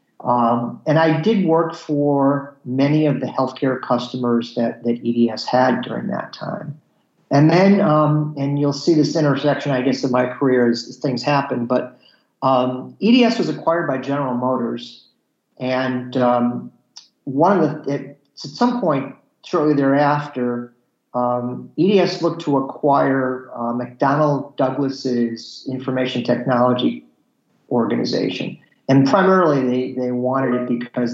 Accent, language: American, English